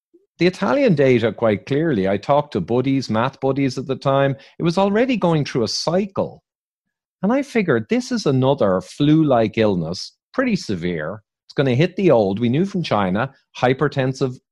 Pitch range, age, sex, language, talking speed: 110-160 Hz, 40-59, male, English, 175 wpm